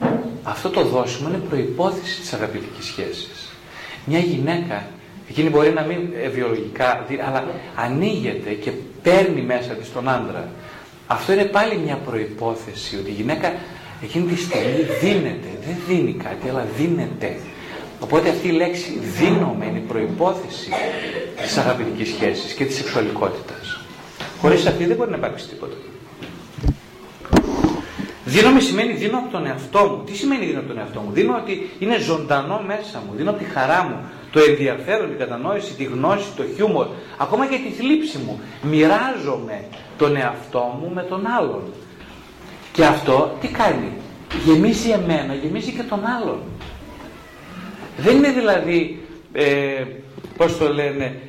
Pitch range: 135-205 Hz